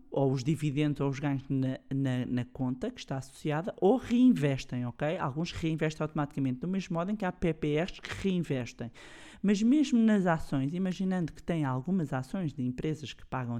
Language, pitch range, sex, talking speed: Portuguese, 135-160 Hz, male, 170 wpm